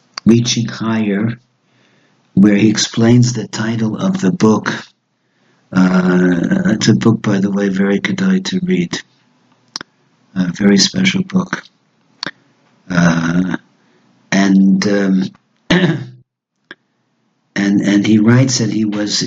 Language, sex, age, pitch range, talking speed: English, male, 60-79, 95-110 Hz, 110 wpm